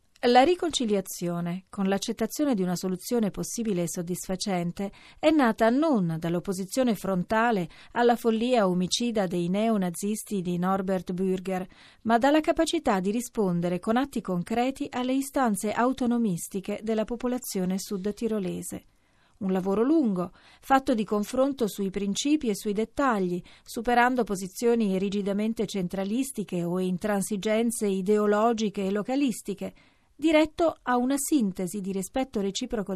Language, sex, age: Italian, female, 40-59